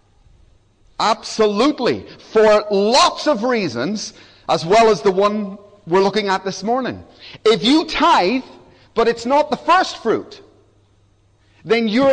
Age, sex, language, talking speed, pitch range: 40-59, male, English, 130 wpm, 185-260 Hz